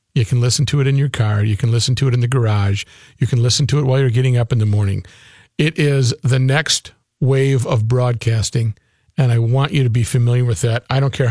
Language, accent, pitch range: English, American, 120-150 Hz